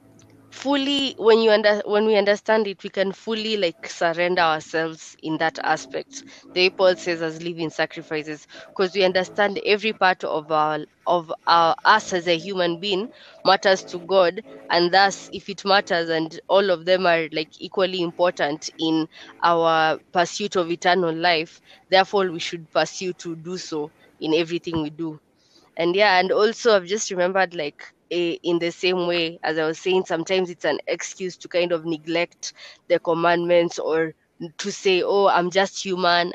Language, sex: English, female